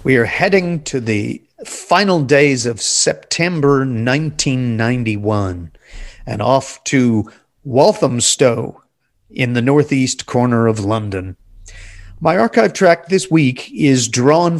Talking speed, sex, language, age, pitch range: 110 wpm, male, English, 40-59, 115-165 Hz